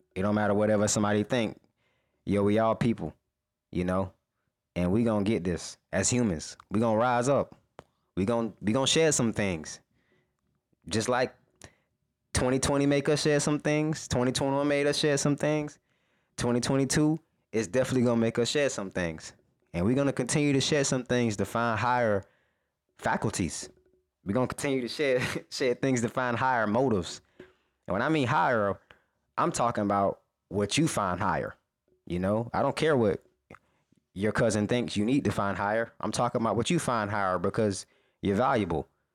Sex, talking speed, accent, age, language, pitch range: male, 175 wpm, American, 20-39, English, 100-130 Hz